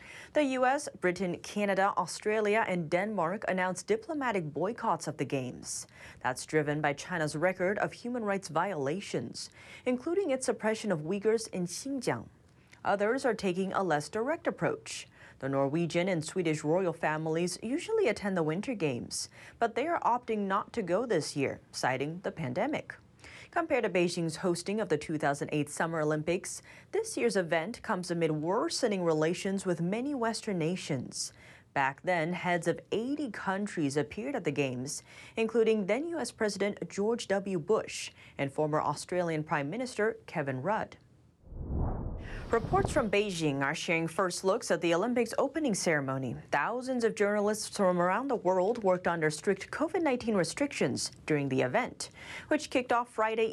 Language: English